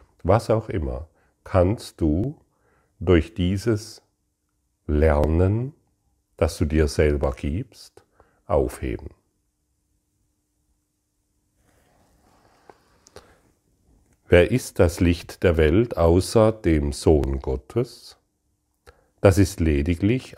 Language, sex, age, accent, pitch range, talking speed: German, male, 40-59, German, 80-105 Hz, 80 wpm